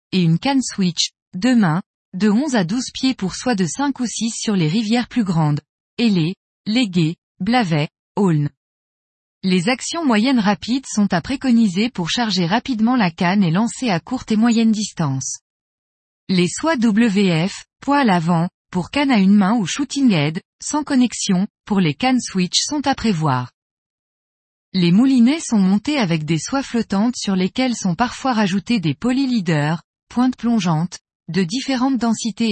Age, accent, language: 20-39, French, French